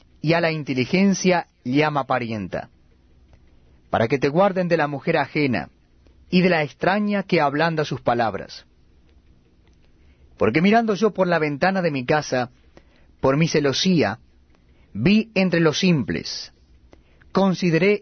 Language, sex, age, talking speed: Spanish, male, 30-49, 130 wpm